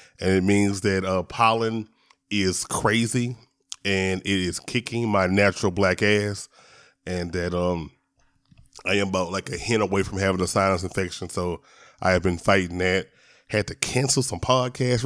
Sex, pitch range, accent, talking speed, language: male, 100-135 Hz, American, 165 wpm, English